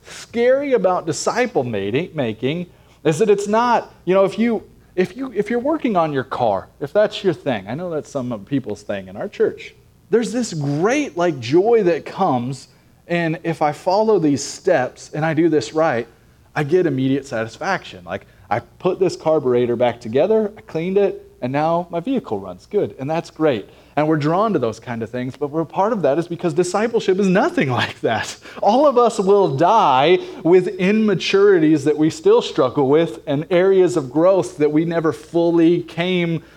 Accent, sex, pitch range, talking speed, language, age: American, male, 150-210 Hz, 190 wpm, English, 30-49